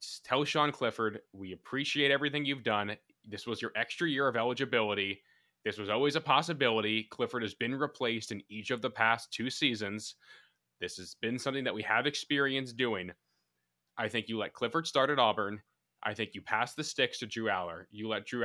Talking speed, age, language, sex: 195 wpm, 20-39, English, male